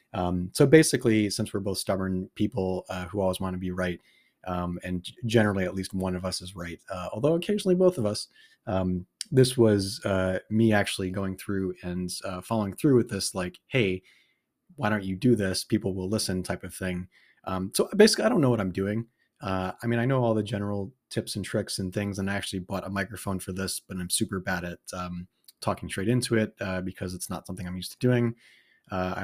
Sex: male